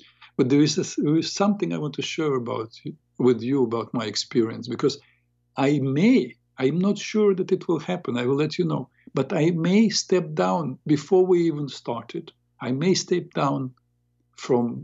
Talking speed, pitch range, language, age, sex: 190 wpm, 115-160 Hz, English, 50-69, male